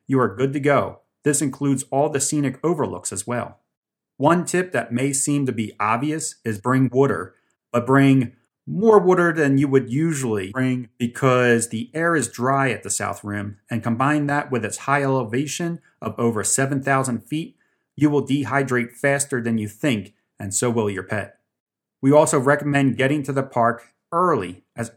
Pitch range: 120-150 Hz